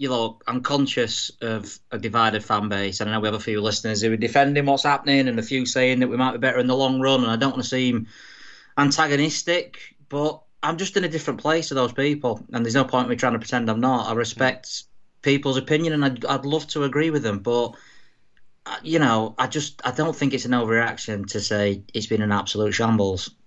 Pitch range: 110-135 Hz